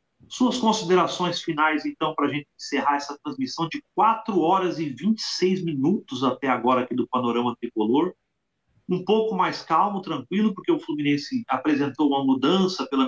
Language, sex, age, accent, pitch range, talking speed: Portuguese, male, 40-59, Brazilian, 140-220 Hz, 150 wpm